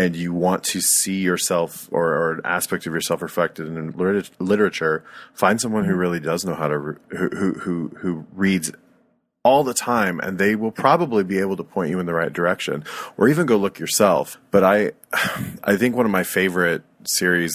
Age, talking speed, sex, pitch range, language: 30-49, 200 wpm, male, 80-95 Hz, English